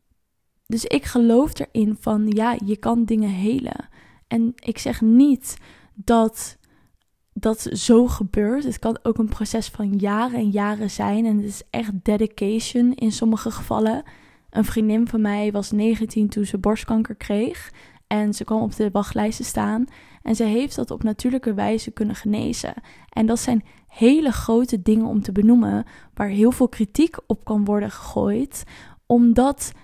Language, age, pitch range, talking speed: Dutch, 10-29, 215-240 Hz, 160 wpm